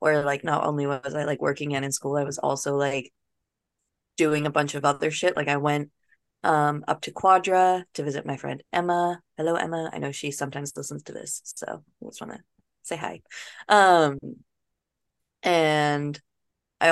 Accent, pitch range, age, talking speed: American, 140-165 Hz, 20-39, 185 wpm